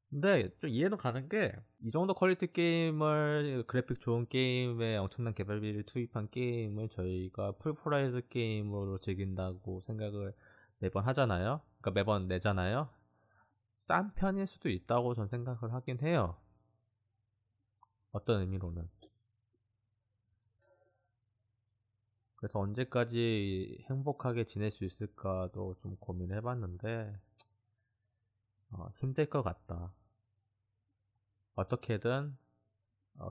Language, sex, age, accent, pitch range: Korean, male, 20-39, native, 95-120 Hz